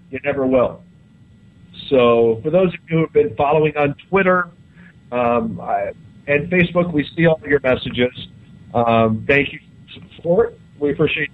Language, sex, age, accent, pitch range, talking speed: English, male, 40-59, American, 115-150 Hz, 170 wpm